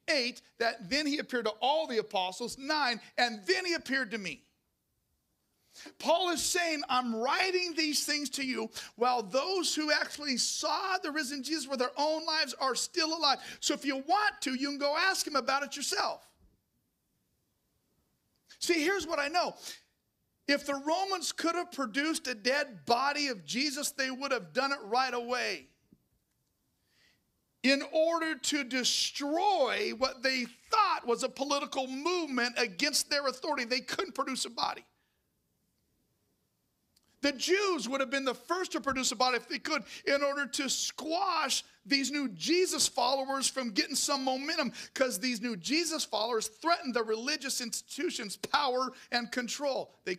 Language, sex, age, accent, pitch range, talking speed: English, male, 50-69, American, 250-310 Hz, 160 wpm